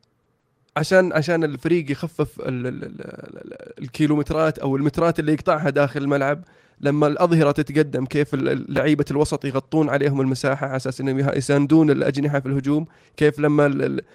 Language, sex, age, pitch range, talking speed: Arabic, male, 20-39, 140-160 Hz, 125 wpm